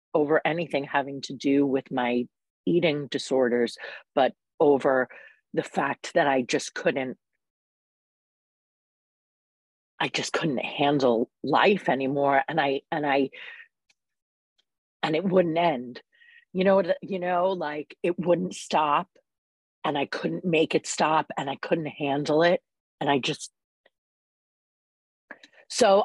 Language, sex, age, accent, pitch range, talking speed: English, female, 40-59, American, 125-170 Hz, 125 wpm